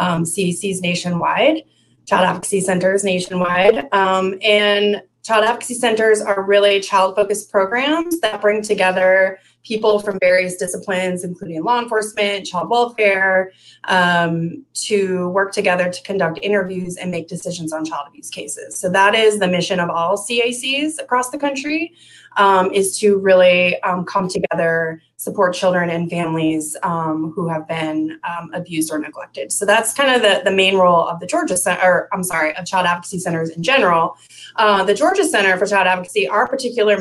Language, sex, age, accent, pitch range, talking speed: English, female, 20-39, American, 175-215 Hz, 165 wpm